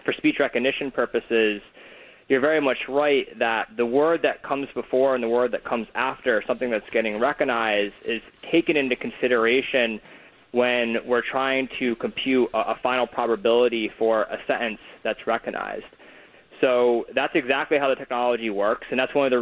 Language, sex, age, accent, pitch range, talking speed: English, male, 20-39, American, 115-135 Hz, 165 wpm